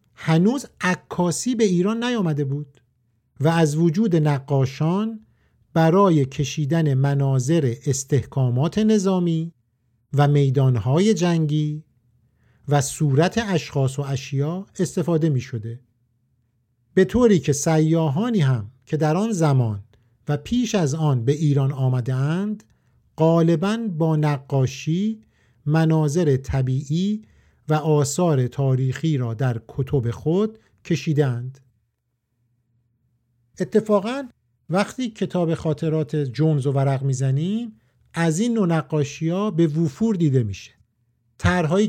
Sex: male